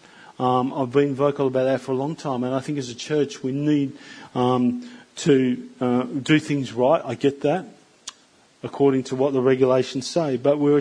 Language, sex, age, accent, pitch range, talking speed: English, male, 40-59, Australian, 125-145 Hz, 195 wpm